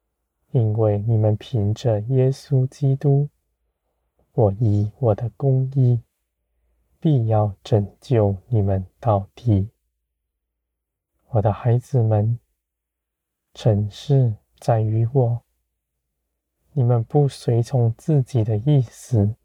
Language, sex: Chinese, male